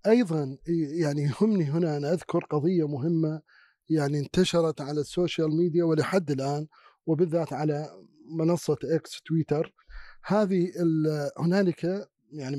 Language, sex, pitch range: Arabic, male, 155-190 Hz